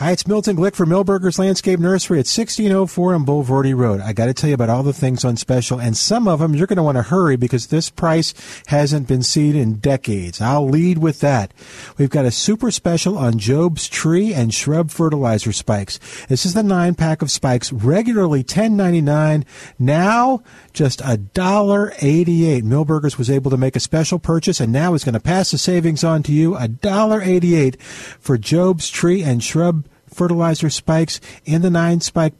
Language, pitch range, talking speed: English, 130-175 Hz, 185 wpm